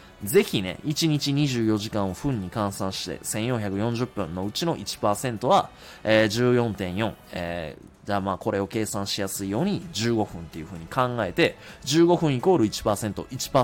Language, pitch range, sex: Japanese, 105-160 Hz, male